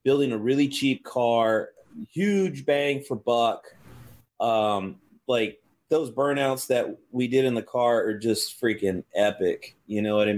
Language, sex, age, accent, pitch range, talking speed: English, male, 30-49, American, 105-130 Hz, 155 wpm